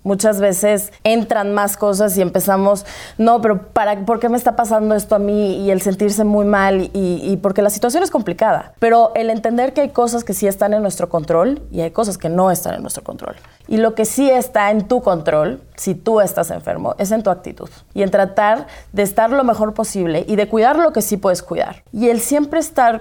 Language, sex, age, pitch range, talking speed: Spanish, female, 20-39, 195-235 Hz, 225 wpm